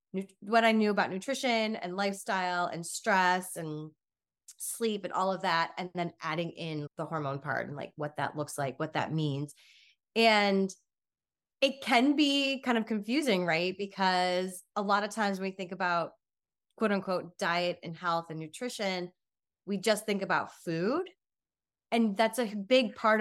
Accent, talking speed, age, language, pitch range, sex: American, 170 wpm, 20-39, English, 165-210 Hz, female